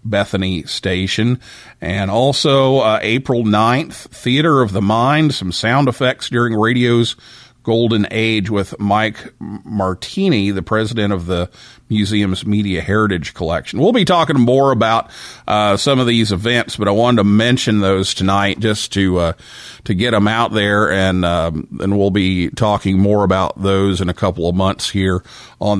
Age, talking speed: 50-69, 165 wpm